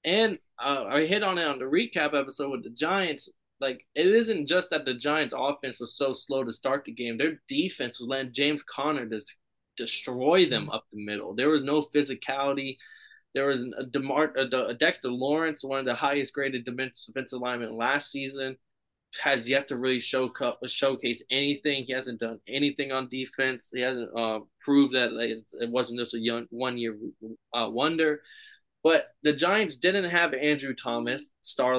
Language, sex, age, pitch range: English, male, 20-39, 120-150 Hz